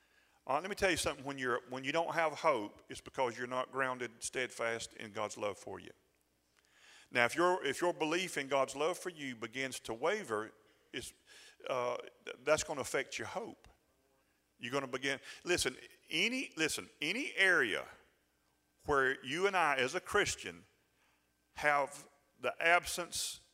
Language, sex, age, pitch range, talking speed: English, male, 40-59, 125-155 Hz, 160 wpm